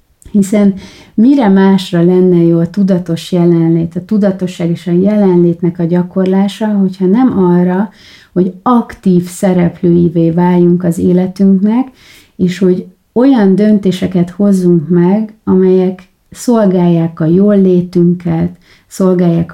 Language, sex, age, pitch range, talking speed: Hungarian, female, 30-49, 175-195 Hz, 105 wpm